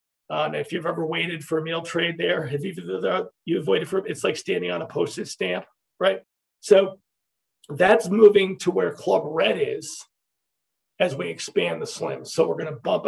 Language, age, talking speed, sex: English, 40-59, 195 wpm, male